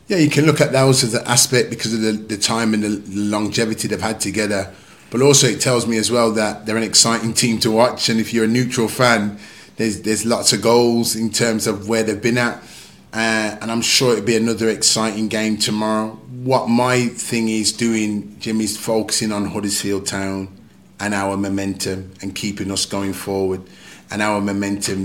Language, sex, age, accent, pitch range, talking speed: English, male, 30-49, British, 100-110 Hz, 200 wpm